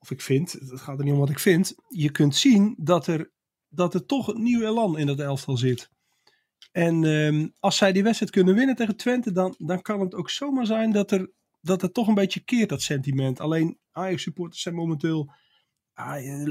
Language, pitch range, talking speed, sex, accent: Dutch, 155-200 Hz, 200 wpm, male, Dutch